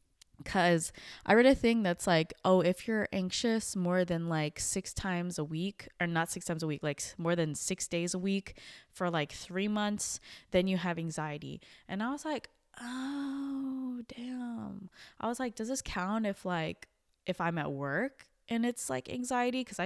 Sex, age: female, 20-39